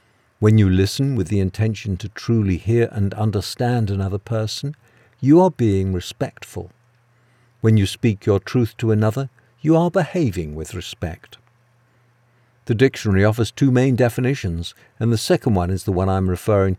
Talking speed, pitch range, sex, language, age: 155 wpm, 100-130 Hz, male, English, 50-69